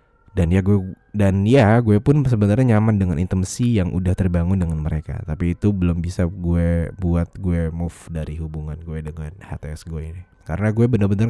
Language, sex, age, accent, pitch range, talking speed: English, male, 20-39, Indonesian, 80-105 Hz, 180 wpm